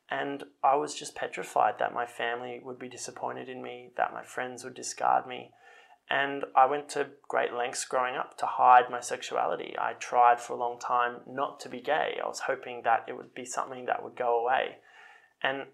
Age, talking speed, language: 20-39, 205 wpm, English